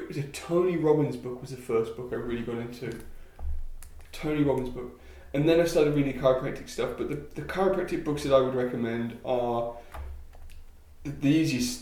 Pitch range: 85-140 Hz